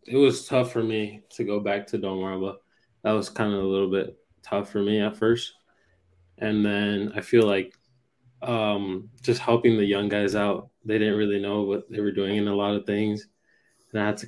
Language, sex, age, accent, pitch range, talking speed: English, male, 20-39, American, 100-115 Hz, 215 wpm